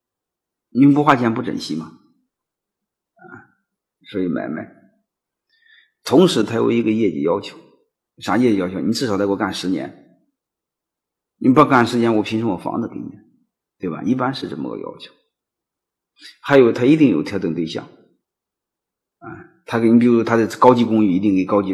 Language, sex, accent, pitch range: Chinese, male, native, 100-130 Hz